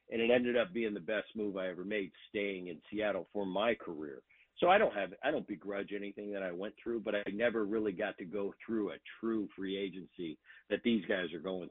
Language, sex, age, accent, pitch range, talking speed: English, male, 50-69, American, 100-115 Hz, 235 wpm